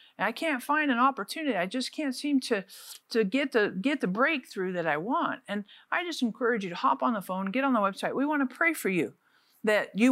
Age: 50-69